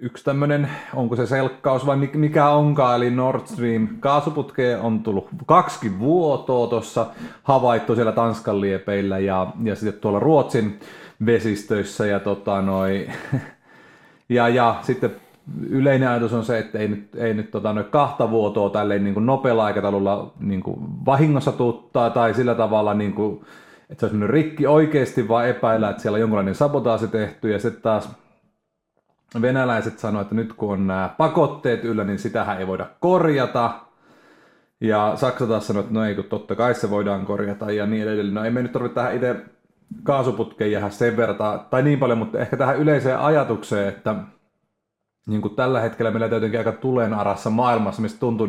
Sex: male